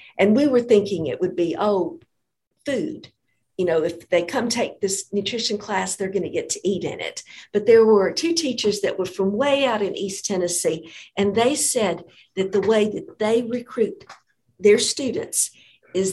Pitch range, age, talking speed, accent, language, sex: 185-225 Hz, 50-69, 190 wpm, American, English, female